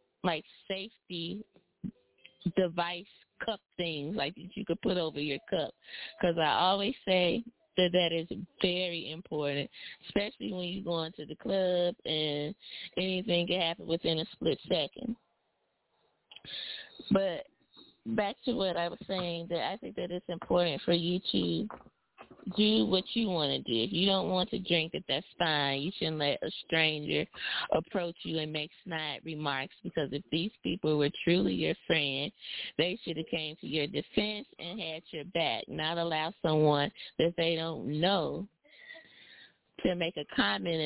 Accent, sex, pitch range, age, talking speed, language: American, female, 155-190 Hz, 20-39, 160 wpm, English